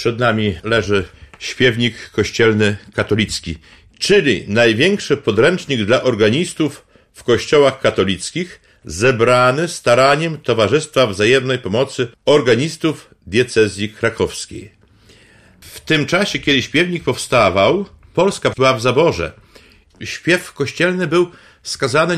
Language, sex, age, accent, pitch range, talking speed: Polish, male, 50-69, native, 105-135 Hz, 95 wpm